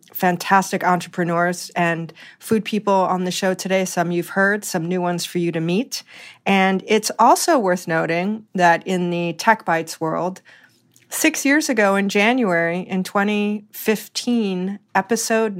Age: 40-59